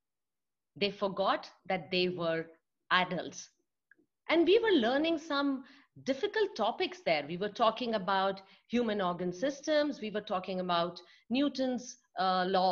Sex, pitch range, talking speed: female, 180-265 Hz, 130 wpm